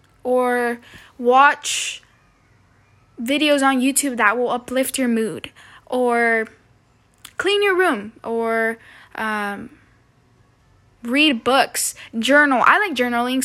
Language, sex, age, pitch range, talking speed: English, female, 10-29, 225-275 Hz, 100 wpm